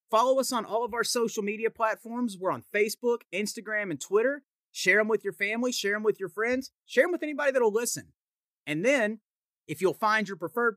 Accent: American